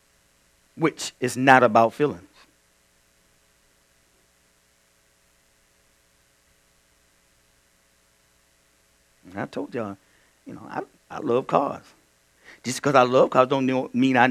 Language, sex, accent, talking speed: English, male, American, 90 wpm